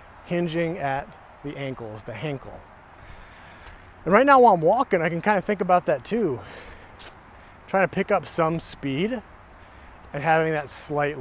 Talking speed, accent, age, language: 160 wpm, American, 30-49, English